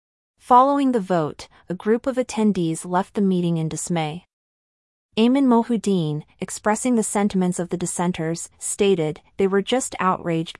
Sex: female